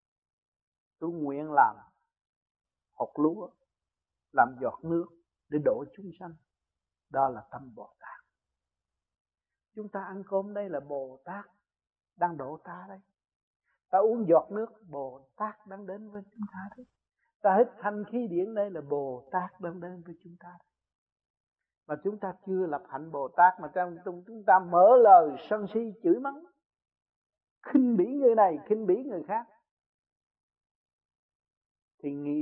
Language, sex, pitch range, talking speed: Vietnamese, male, 145-220 Hz, 150 wpm